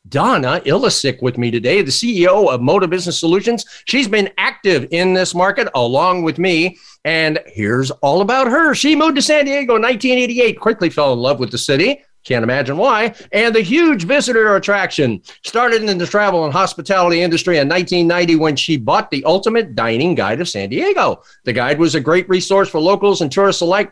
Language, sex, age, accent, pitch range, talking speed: English, male, 50-69, American, 150-220 Hz, 195 wpm